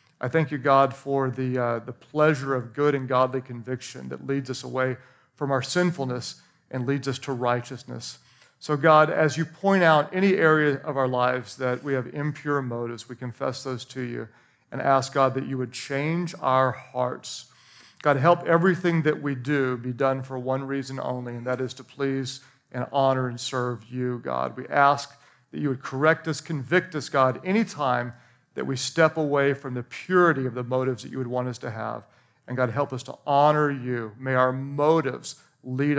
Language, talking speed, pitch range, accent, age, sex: English, 195 wpm, 130-155 Hz, American, 40-59, male